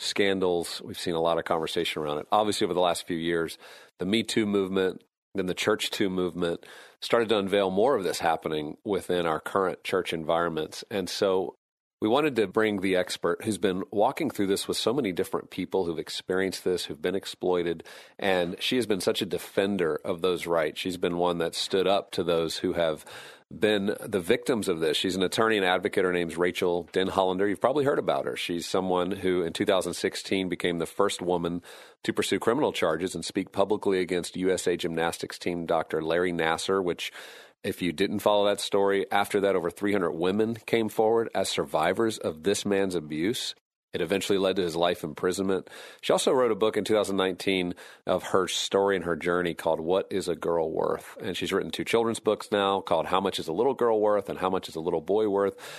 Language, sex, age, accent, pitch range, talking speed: English, male, 40-59, American, 85-100 Hz, 205 wpm